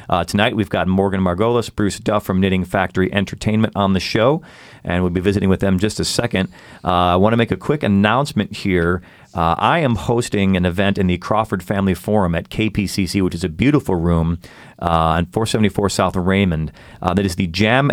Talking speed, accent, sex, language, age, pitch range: 210 wpm, American, male, English, 40-59, 90-105 Hz